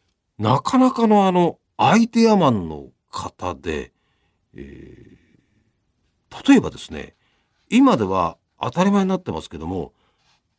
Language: Japanese